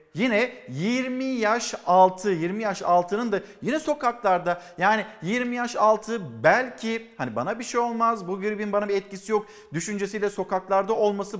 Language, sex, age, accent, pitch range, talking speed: Turkish, male, 50-69, native, 180-225 Hz, 155 wpm